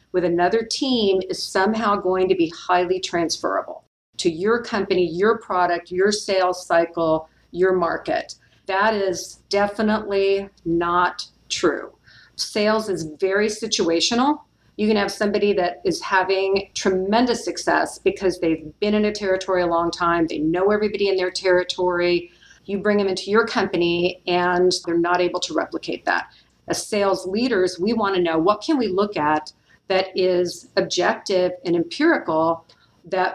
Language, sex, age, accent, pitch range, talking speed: English, female, 50-69, American, 175-205 Hz, 150 wpm